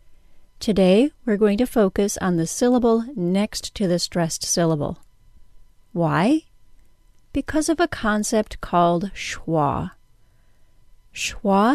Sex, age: female, 40-59